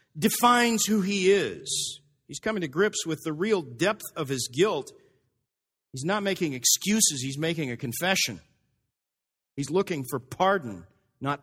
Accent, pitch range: American, 130-180 Hz